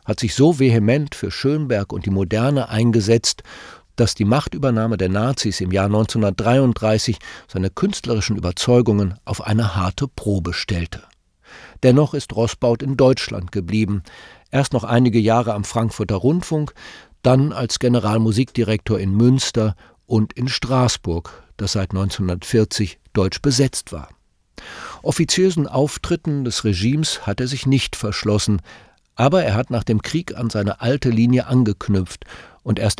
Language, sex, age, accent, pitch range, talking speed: German, male, 50-69, German, 100-130 Hz, 135 wpm